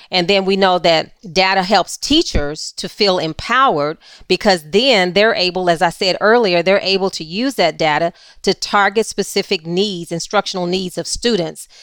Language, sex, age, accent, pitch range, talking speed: English, female, 40-59, American, 180-220 Hz, 170 wpm